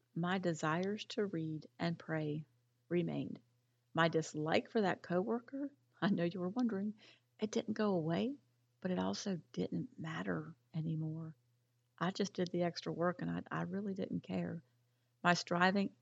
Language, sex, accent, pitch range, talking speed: English, female, American, 125-195 Hz, 155 wpm